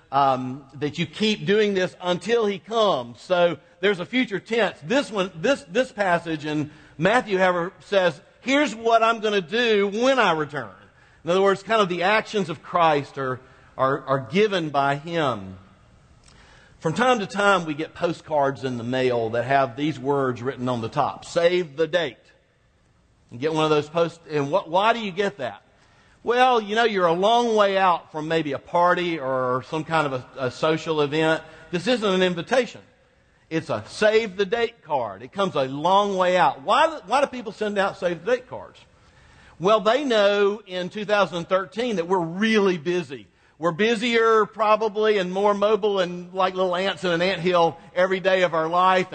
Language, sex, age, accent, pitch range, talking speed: English, male, 50-69, American, 155-215 Hz, 185 wpm